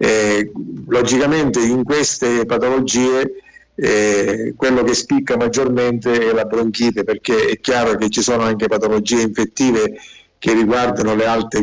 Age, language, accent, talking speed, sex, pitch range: 50-69, Italian, native, 135 wpm, male, 110-125 Hz